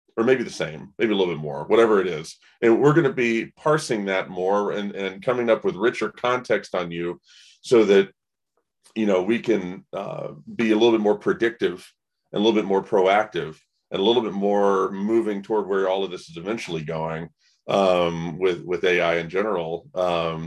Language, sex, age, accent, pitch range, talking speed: English, male, 40-59, American, 90-115 Hz, 200 wpm